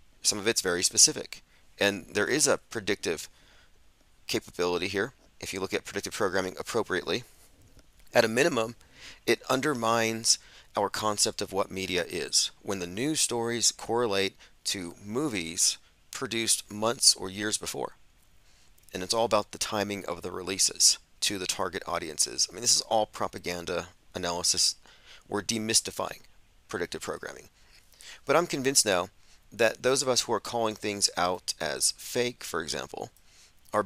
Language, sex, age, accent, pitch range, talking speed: English, male, 30-49, American, 90-115 Hz, 150 wpm